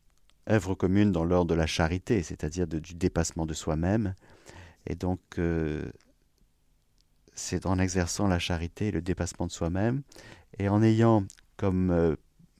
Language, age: French, 50-69